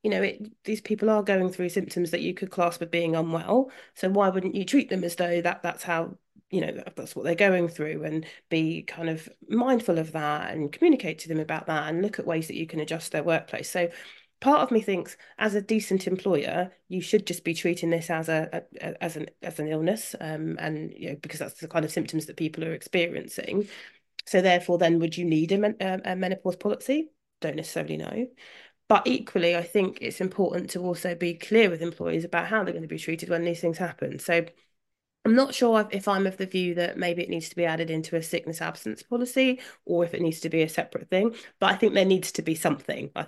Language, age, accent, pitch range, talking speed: English, 30-49, British, 165-200 Hz, 235 wpm